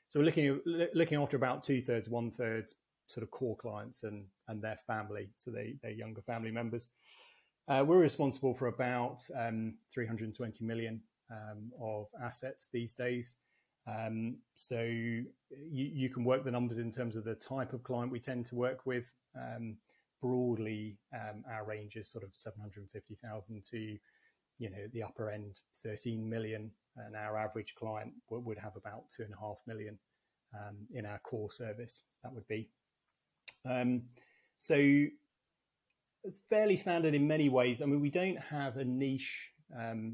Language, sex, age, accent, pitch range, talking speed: English, male, 30-49, British, 110-135 Hz, 175 wpm